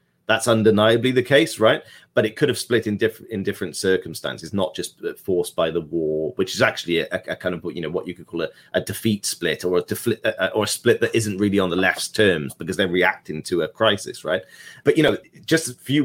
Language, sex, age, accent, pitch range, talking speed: English, male, 30-49, British, 95-115 Hz, 245 wpm